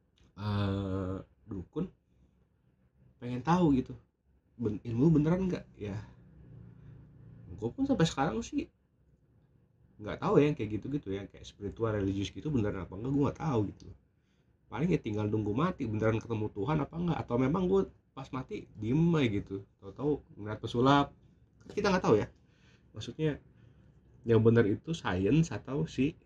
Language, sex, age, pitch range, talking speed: Indonesian, male, 30-49, 90-125 Hz, 150 wpm